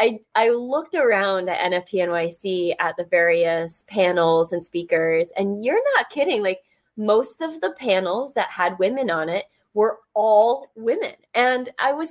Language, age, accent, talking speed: English, 20-39, American, 165 wpm